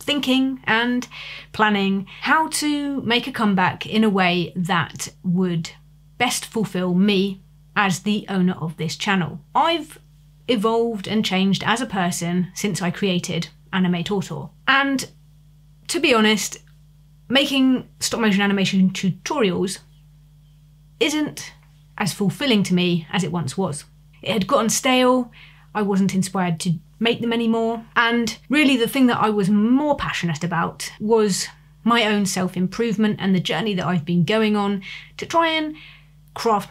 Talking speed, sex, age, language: 145 wpm, female, 30-49, English